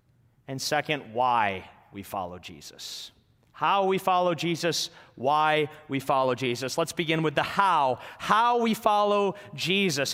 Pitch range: 140-195 Hz